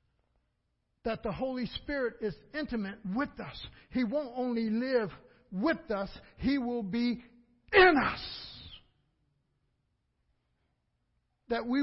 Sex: male